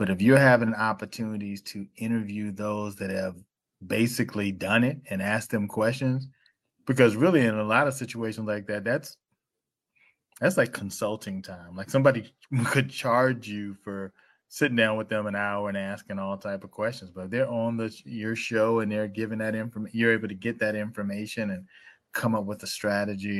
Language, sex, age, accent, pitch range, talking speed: English, male, 20-39, American, 100-115 Hz, 185 wpm